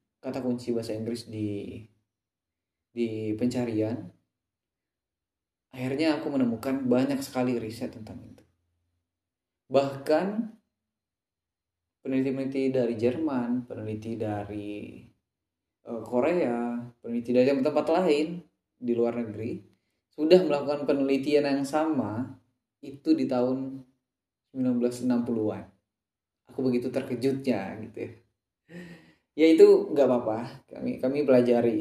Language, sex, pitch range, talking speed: Indonesian, male, 110-135 Hz, 95 wpm